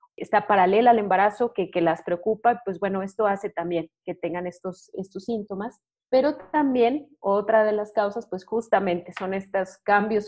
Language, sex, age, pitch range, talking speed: Spanish, female, 30-49, 180-220 Hz, 170 wpm